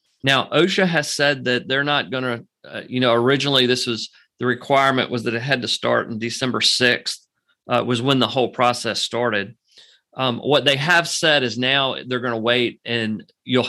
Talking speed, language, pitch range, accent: 195 wpm, English, 120-140 Hz, American